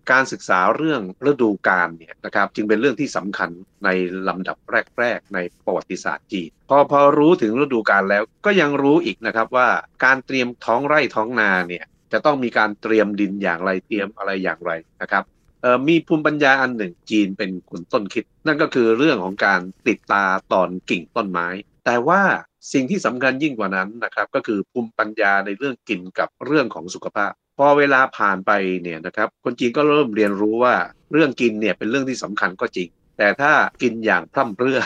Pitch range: 95-135 Hz